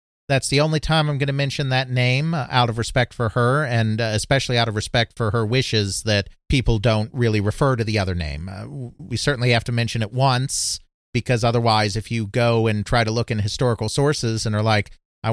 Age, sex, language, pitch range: 40-59, male, English, 105-125 Hz